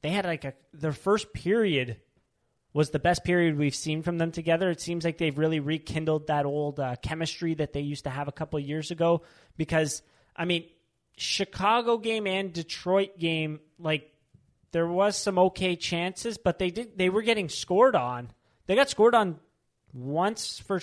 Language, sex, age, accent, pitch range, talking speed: English, male, 30-49, American, 145-180 Hz, 185 wpm